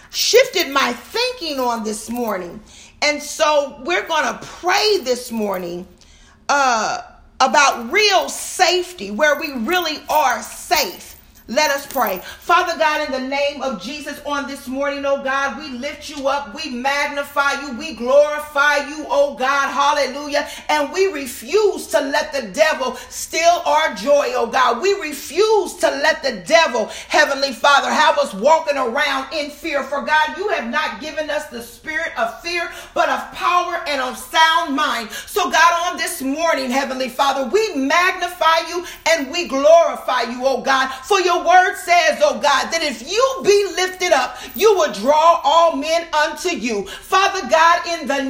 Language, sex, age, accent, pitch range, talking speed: English, female, 40-59, American, 275-345 Hz, 165 wpm